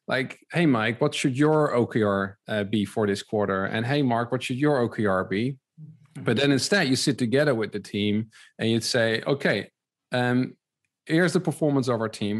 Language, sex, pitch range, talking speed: English, male, 110-145 Hz, 195 wpm